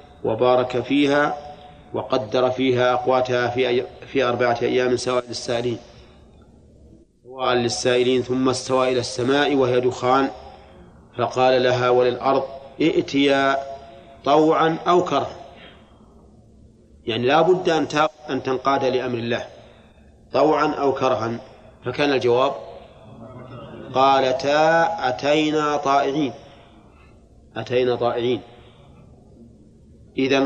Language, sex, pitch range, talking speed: Arabic, male, 125-140 Hz, 85 wpm